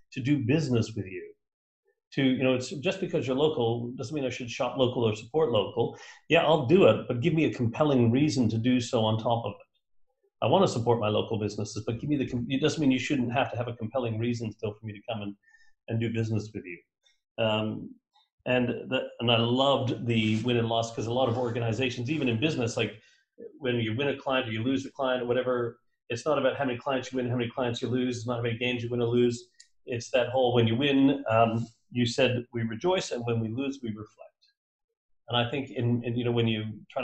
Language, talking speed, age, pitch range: English, 245 wpm, 40-59, 115-140 Hz